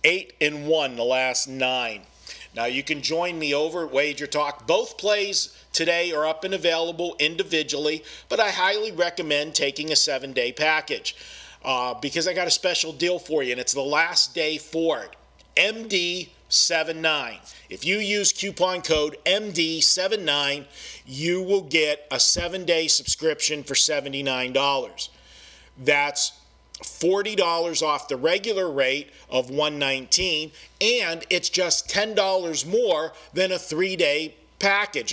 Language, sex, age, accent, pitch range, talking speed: English, male, 40-59, American, 145-180 Hz, 135 wpm